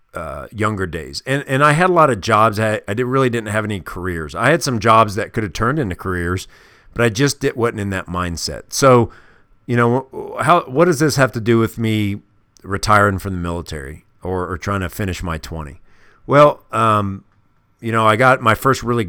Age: 50-69